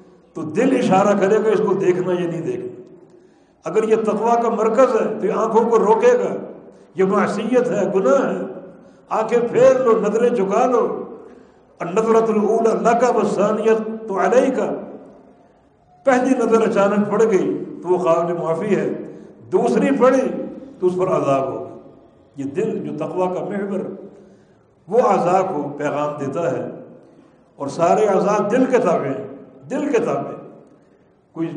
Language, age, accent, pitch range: English, 60-79, Indian, 175-225 Hz